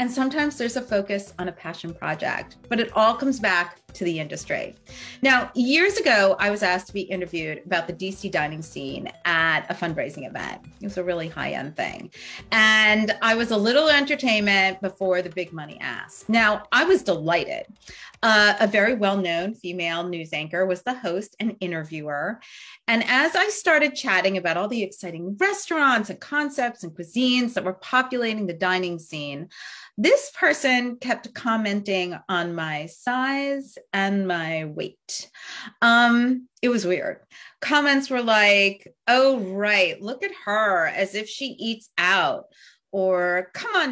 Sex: female